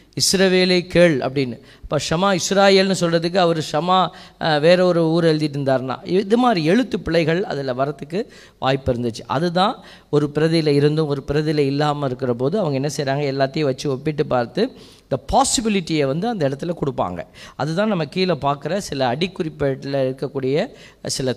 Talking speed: 145 wpm